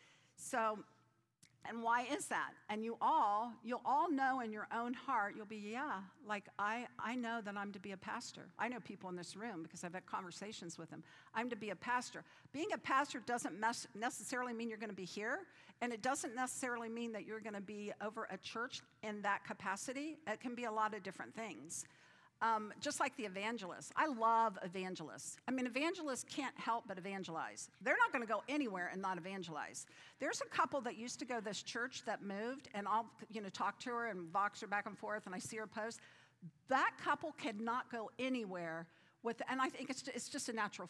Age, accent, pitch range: 50-69, American, 205-255 Hz